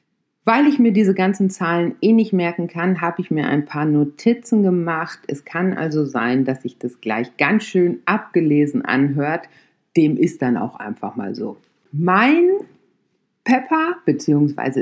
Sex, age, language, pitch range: female, 50-69, German, 130-195 Hz